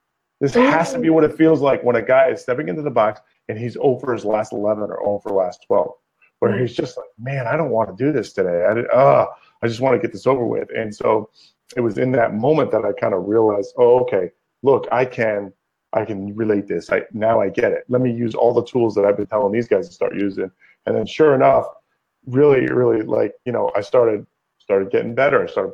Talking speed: 250 wpm